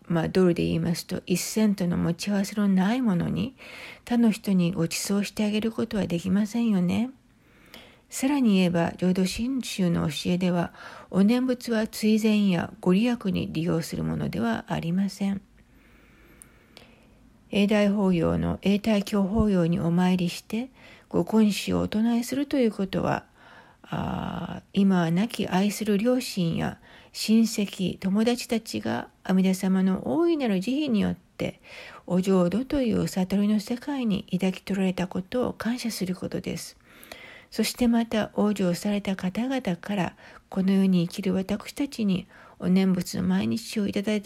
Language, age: English, 60-79